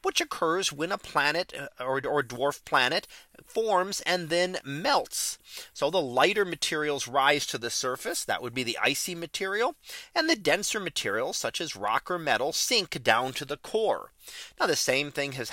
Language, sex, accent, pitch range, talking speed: English, male, American, 135-200 Hz, 175 wpm